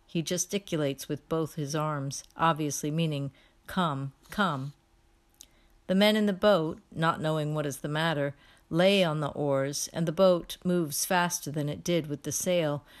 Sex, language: female, English